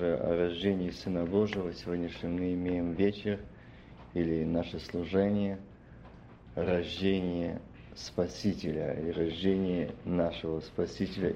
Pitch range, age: 85-110 Hz, 50-69